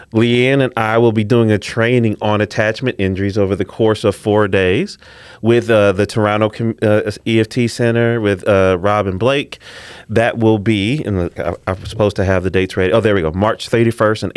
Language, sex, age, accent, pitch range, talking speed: English, male, 30-49, American, 100-115 Hz, 190 wpm